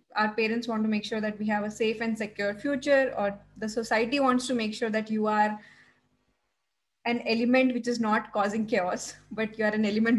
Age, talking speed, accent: 10-29, 210 wpm, Indian